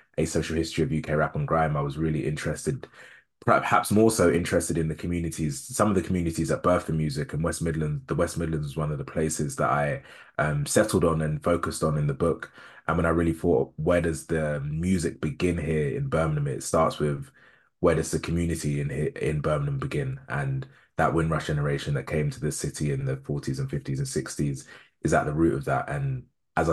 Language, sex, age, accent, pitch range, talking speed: English, male, 20-39, British, 75-90 Hz, 220 wpm